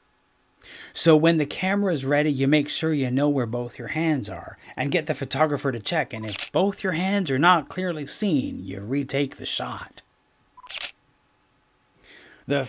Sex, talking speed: male, 170 wpm